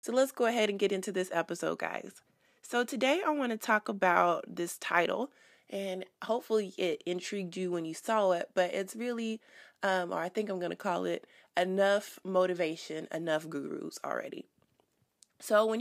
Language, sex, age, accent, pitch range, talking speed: English, female, 20-39, American, 175-205 Hz, 175 wpm